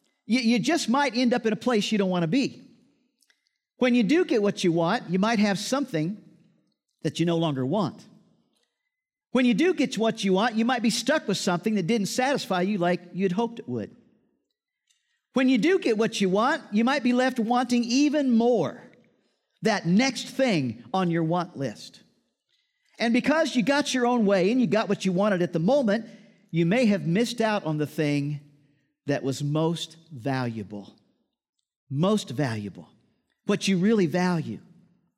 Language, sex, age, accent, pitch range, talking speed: English, male, 50-69, American, 175-255 Hz, 180 wpm